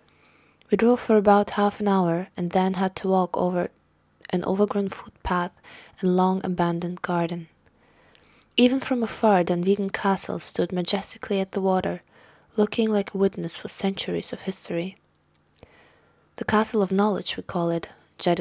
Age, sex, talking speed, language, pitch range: 20-39, female, 145 wpm, English, 175-210 Hz